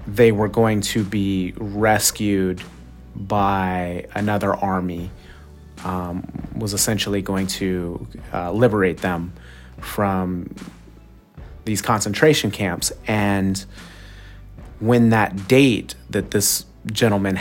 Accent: American